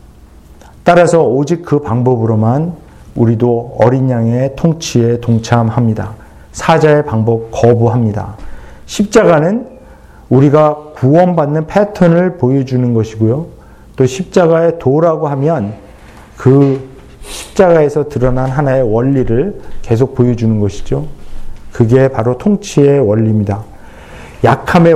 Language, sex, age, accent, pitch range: Korean, male, 40-59, native, 110-145 Hz